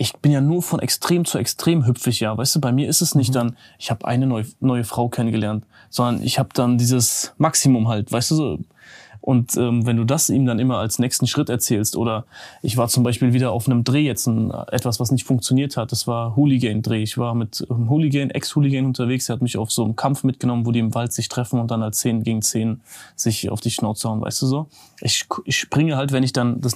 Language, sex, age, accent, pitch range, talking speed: German, male, 20-39, German, 120-135 Hz, 245 wpm